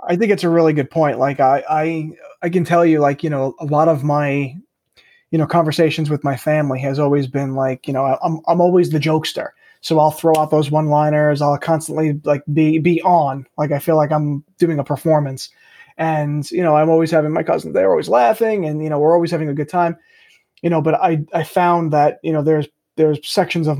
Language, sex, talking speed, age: English, male, 230 wpm, 20-39